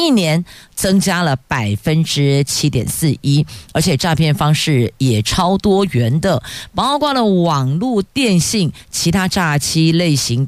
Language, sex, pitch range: Chinese, female, 135-190 Hz